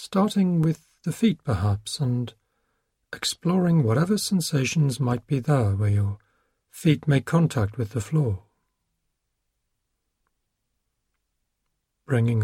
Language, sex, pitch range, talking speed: English, male, 110-135 Hz, 100 wpm